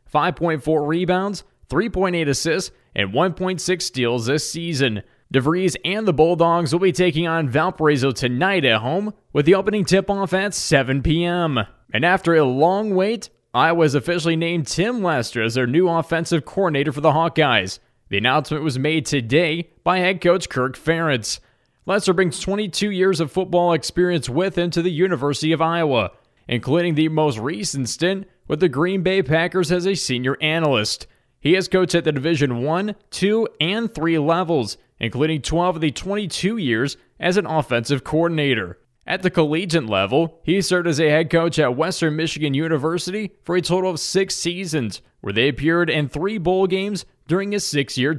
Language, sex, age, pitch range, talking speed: English, male, 20-39, 150-180 Hz, 170 wpm